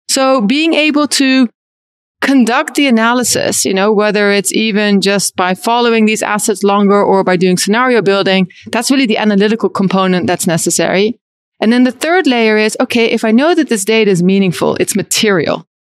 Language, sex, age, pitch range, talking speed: English, female, 30-49, 200-255 Hz, 180 wpm